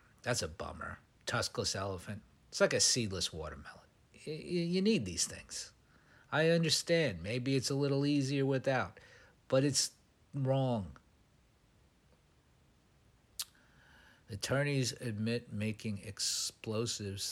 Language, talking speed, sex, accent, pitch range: English, 100 wpm, male, American, 95-130 Hz